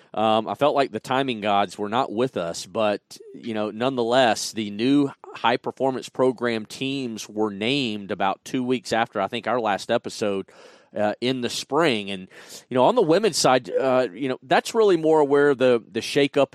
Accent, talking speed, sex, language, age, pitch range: American, 190 wpm, male, English, 40-59, 110-135 Hz